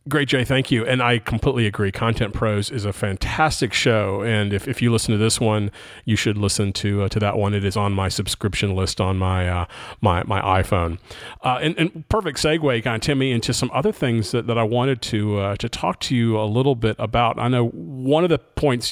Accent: American